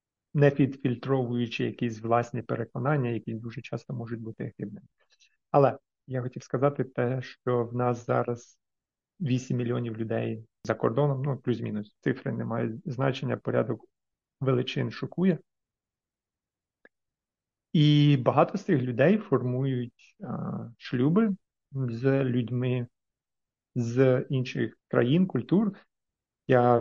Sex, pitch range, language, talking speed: male, 120-140 Hz, Ukrainian, 110 wpm